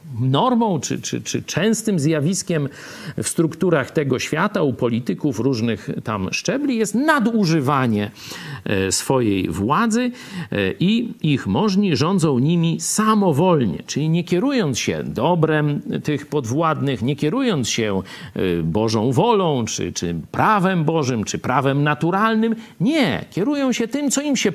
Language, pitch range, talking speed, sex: Polish, 125-195 Hz, 125 wpm, male